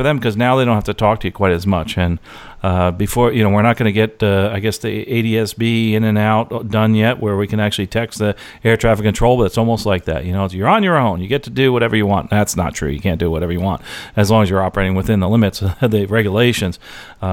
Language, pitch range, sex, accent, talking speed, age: English, 100-125 Hz, male, American, 280 wpm, 40-59